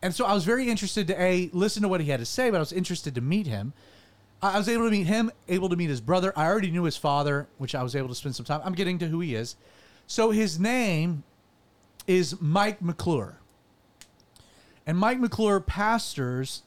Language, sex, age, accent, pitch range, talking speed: English, male, 30-49, American, 140-205 Hz, 225 wpm